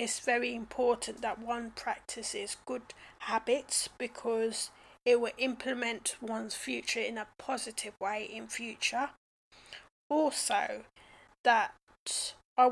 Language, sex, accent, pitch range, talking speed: English, female, British, 225-270 Hz, 110 wpm